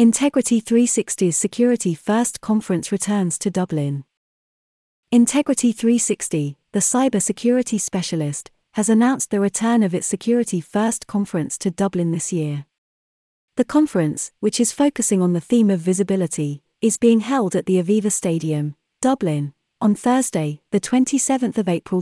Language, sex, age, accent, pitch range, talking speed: English, female, 30-49, British, 170-230 Hz, 135 wpm